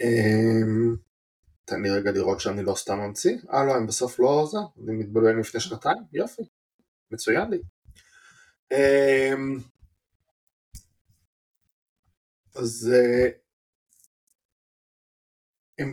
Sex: male